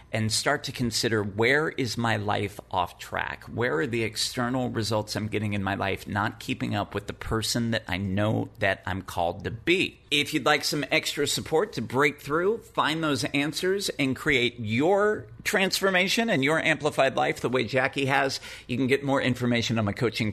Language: English